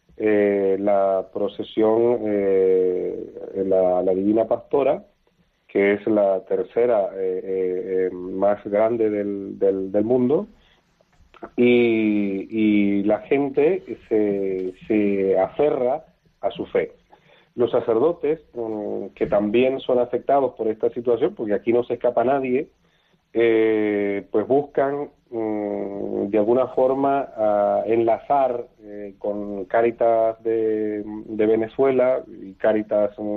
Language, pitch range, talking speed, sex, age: Spanish, 100-125 Hz, 110 wpm, male, 40-59